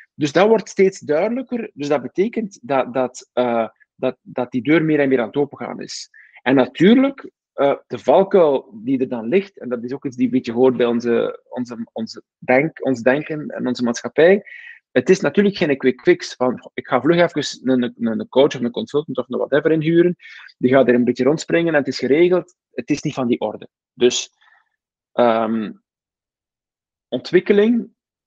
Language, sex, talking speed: Dutch, male, 190 wpm